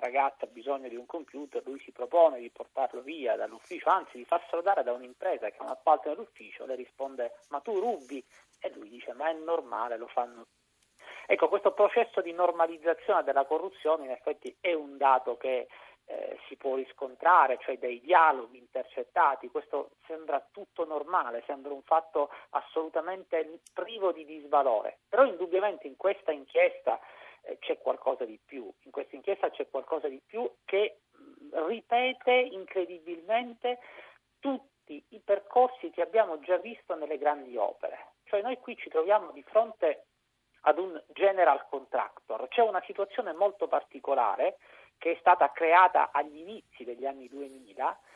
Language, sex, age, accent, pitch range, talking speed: Italian, male, 40-59, native, 145-220 Hz, 155 wpm